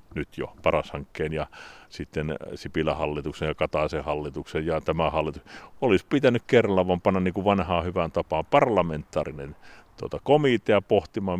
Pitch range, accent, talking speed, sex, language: 85-115 Hz, native, 130 wpm, male, Finnish